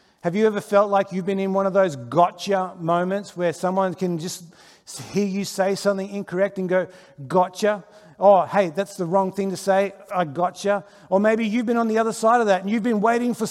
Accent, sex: Australian, male